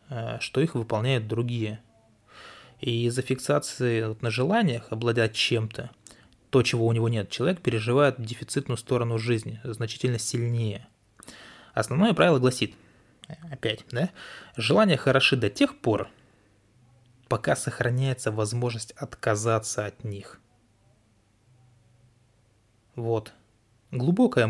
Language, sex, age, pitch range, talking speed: Russian, male, 20-39, 110-125 Hz, 105 wpm